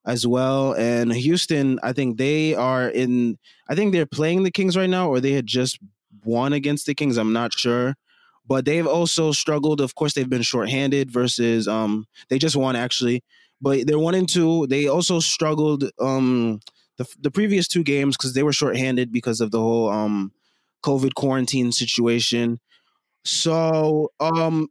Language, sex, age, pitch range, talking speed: English, male, 20-39, 125-155 Hz, 170 wpm